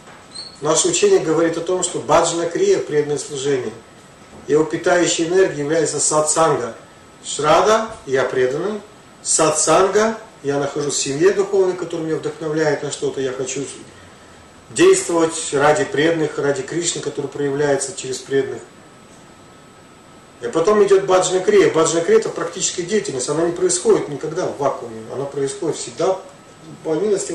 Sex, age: male, 40-59